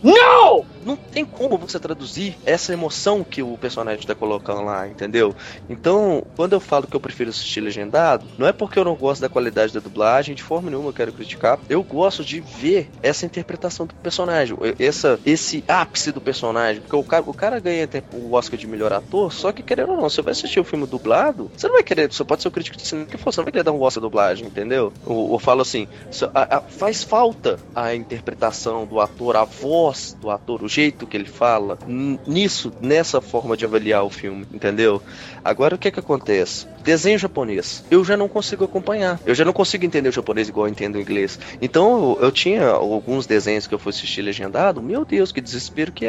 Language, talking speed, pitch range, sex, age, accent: Portuguese, 210 wpm, 110-180 Hz, male, 20-39, Brazilian